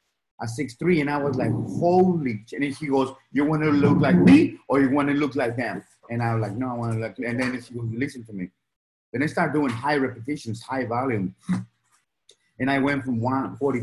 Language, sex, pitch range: English, male, 115-145 Hz